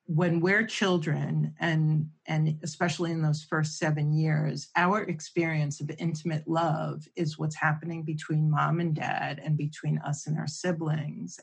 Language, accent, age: English, American, 40-59